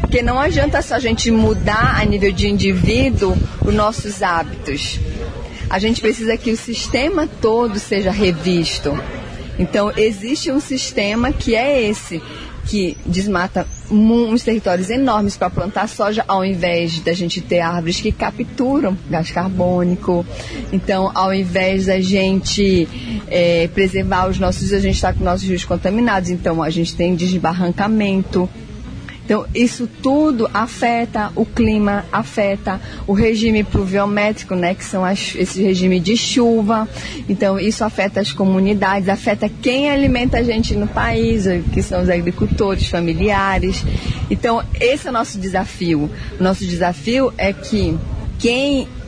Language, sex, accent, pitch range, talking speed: Portuguese, female, Brazilian, 180-225 Hz, 140 wpm